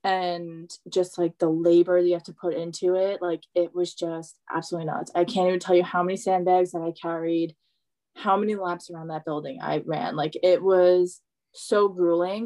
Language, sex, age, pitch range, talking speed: English, female, 20-39, 170-190 Hz, 200 wpm